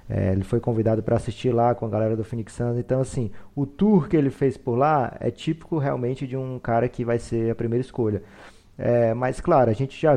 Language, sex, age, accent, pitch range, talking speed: Portuguese, male, 20-39, Brazilian, 110-125 Hz, 235 wpm